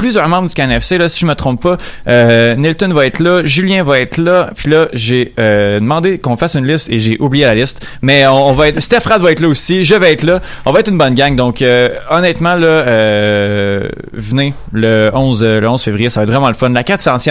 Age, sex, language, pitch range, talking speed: 30-49, male, French, 115-155 Hz, 260 wpm